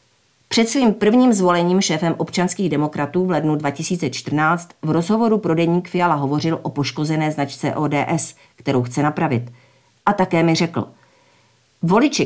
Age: 50-69